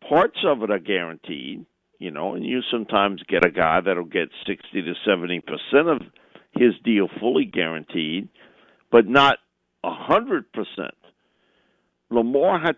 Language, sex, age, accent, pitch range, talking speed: English, male, 50-69, American, 110-160 Hz, 135 wpm